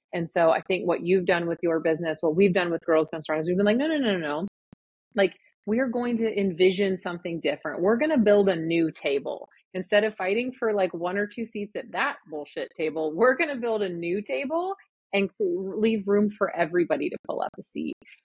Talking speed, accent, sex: 225 wpm, American, female